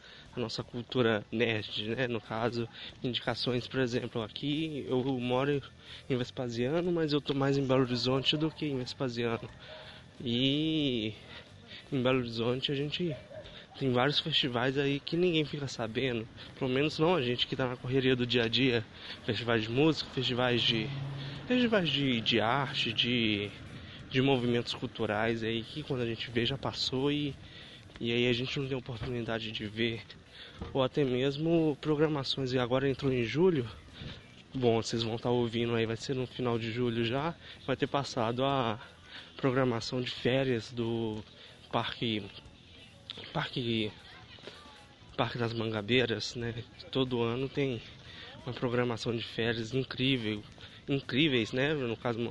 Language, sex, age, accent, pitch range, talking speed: Portuguese, male, 20-39, Brazilian, 115-135 Hz, 150 wpm